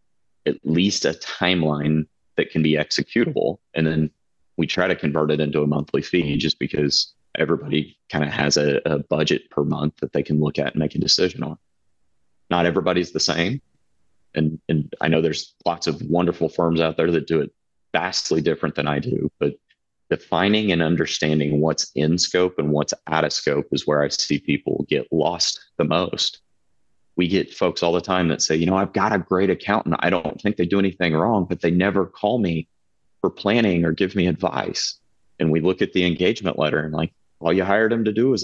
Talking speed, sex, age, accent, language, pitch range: 210 wpm, male, 30-49, American, English, 75-95 Hz